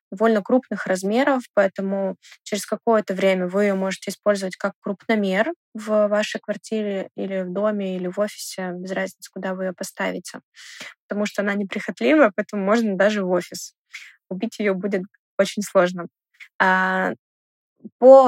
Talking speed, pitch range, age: 140 wpm, 195-225 Hz, 20-39